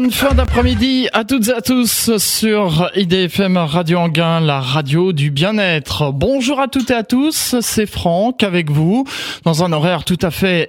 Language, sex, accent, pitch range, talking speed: French, male, French, 165-230 Hz, 175 wpm